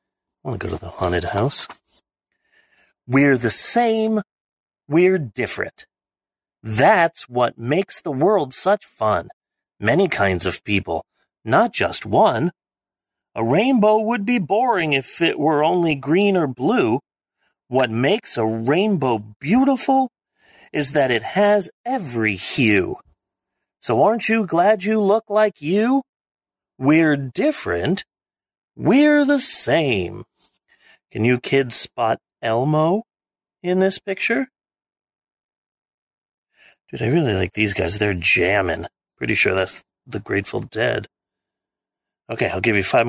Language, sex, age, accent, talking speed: English, male, 30-49, American, 125 wpm